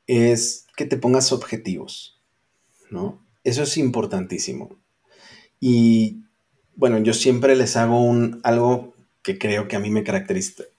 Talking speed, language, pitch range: 135 wpm, Spanish, 115-135 Hz